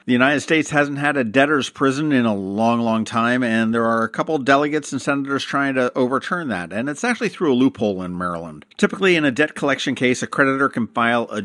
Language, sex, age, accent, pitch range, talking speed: English, male, 50-69, American, 115-140 Hz, 235 wpm